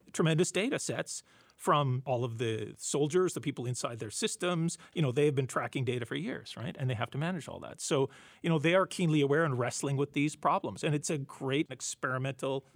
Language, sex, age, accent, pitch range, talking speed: English, male, 40-59, American, 125-155 Hz, 220 wpm